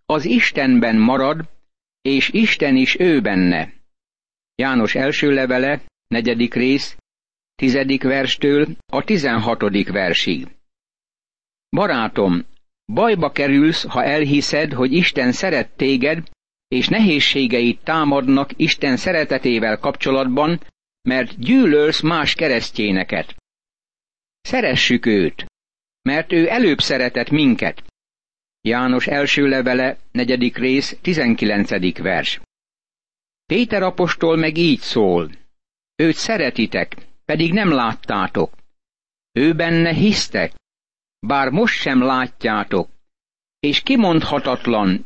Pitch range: 125-165 Hz